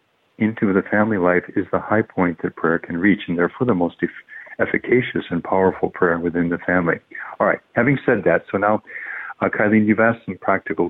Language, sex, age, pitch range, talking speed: English, male, 40-59, 90-110 Hz, 200 wpm